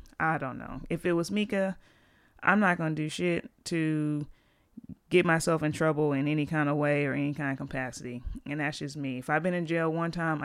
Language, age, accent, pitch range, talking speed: English, 30-49, American, 145-170 Hz, 225 wpm